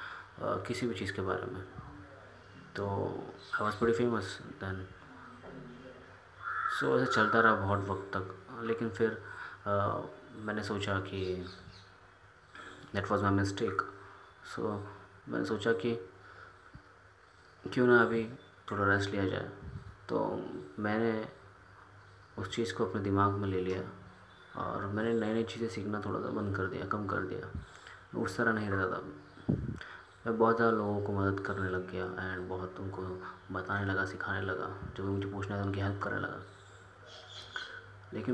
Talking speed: 145 wpm